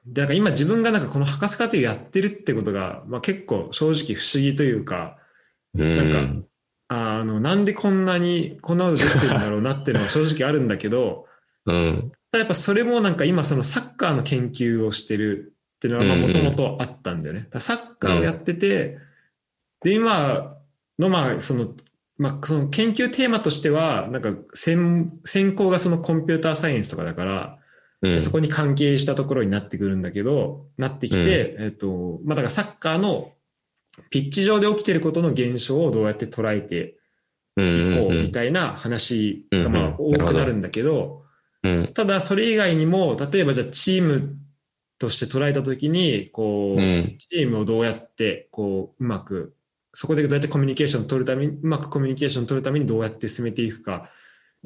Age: 20-39